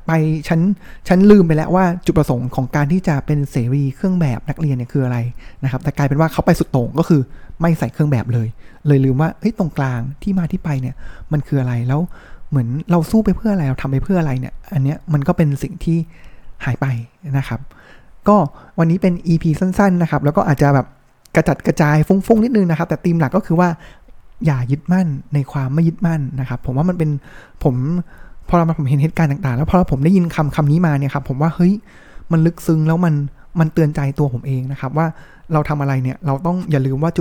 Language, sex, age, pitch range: Thai, male, 20-39, 135-170 Hz